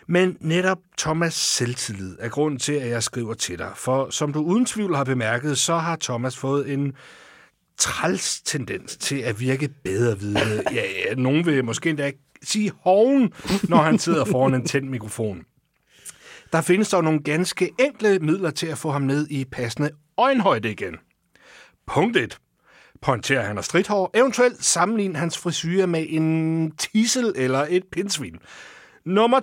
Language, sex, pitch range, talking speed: Danish, male, 130-190 Hz, 160 wpm